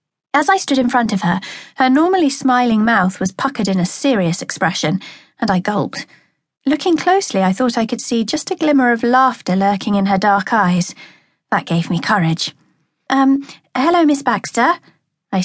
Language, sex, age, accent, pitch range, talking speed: English, female, 40-59, British, 180-255 Hz, 180 wpm